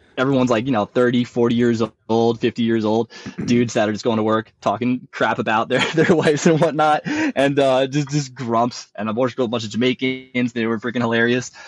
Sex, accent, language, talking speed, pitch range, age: male, American, English, 215 wpm, 105-130 Hz, 20-39